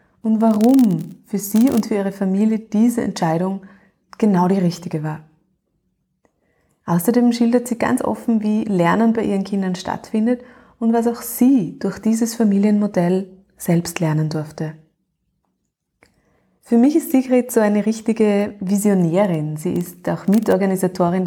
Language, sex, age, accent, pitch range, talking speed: German, female, 20-39, German, 180-225 Hz, 135 wpm